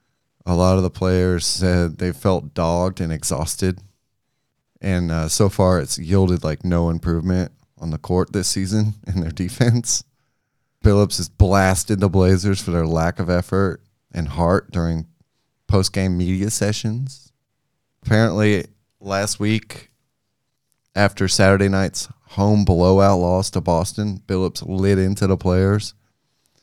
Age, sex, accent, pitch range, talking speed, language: 30-49, male, American, 90-120 Hz, 135 wpm, English